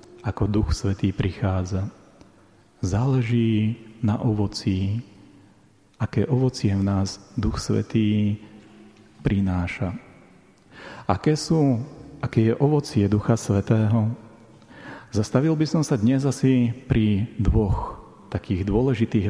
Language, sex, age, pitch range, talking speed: Slovak, male, 40-59, 100-130 Hz, 95 wpm